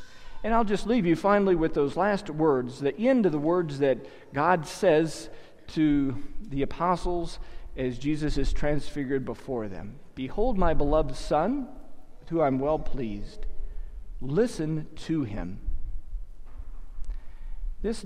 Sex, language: male, English